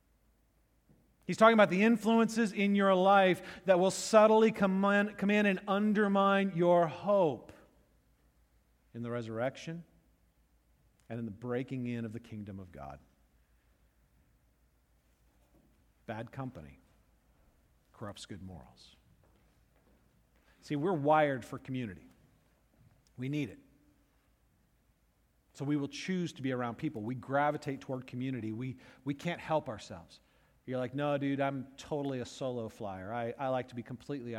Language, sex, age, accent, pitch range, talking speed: English, male, 50-69, American, 110-160 Hz, 130 wpm